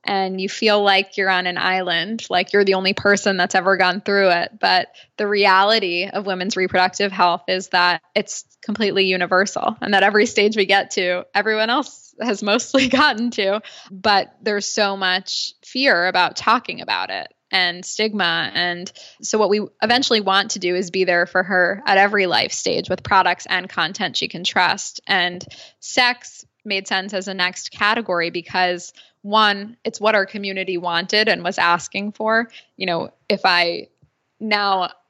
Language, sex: English, female